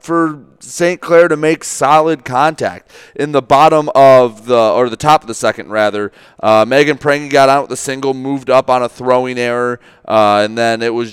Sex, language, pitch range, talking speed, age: male, English, 115-145 Hz, 205 wpm, 30-49